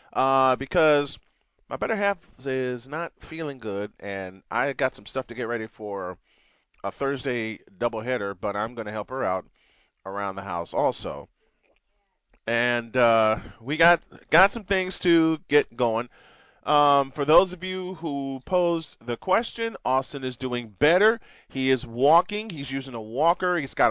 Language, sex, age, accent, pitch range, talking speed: English, male, 30-49, American, 115-155 Hz, 160 wpm